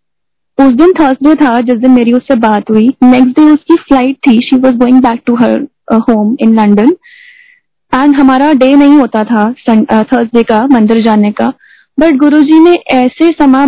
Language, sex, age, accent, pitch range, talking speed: Hindi, female, 10-29, native, 240-300 Hz, 170 wpm